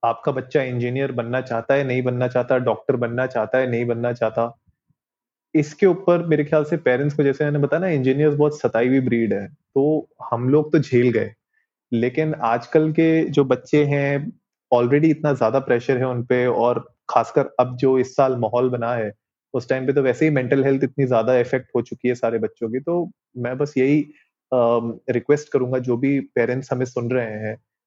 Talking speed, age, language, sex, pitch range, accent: 195 wpm, 30-49, Hindi, male, 120-140 Hz, native